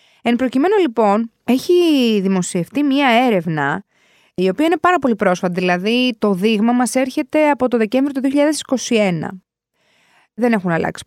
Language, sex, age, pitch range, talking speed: Greek, female, 20-39, 195-275 Hz, 140 wpm